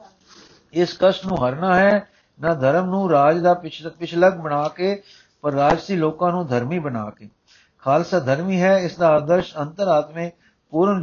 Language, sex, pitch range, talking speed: Punjabi, male, 150-180 Hz, 160 wpm